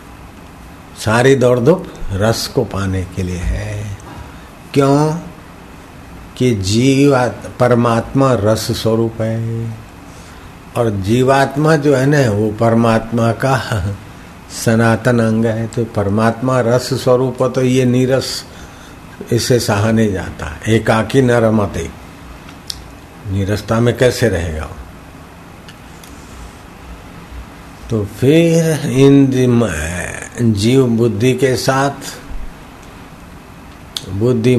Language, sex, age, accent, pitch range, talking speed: Hindi, male, 60-79, native, 95-125 Hz, 90 wpm